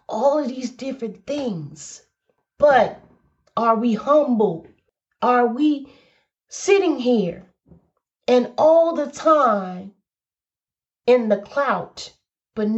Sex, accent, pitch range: female, American, 205-275 Hz